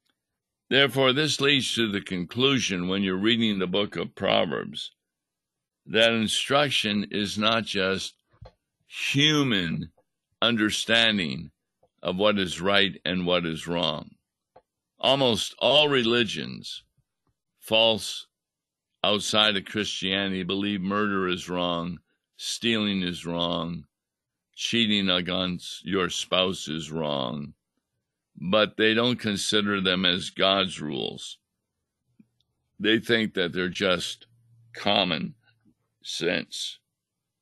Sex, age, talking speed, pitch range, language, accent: male, 60-79, 100 wpm, 95-115 Hz, English, American